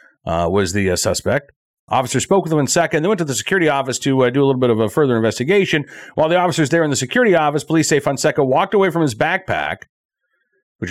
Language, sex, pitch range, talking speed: English, male, 120-165 Hz, 240 wpm